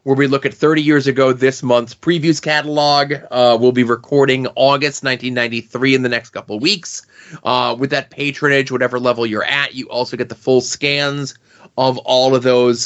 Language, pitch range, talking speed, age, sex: English, 110-135 Hz, 185 wpm, 30-49, male